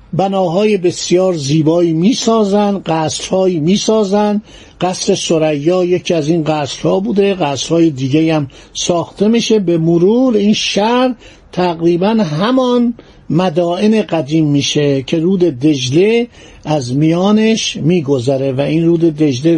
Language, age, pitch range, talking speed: Persian, 50-69, 155-205 Hz, 115 wpm